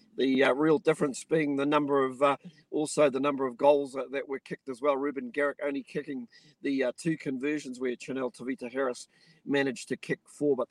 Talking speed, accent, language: 200 wpm, Australian, English